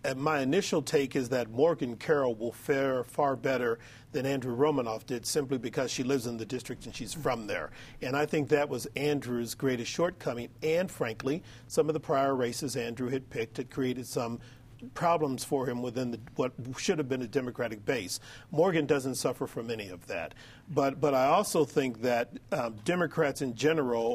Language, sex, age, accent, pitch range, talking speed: English, male, 50-69, American, 120-150 Hz, 190 wpm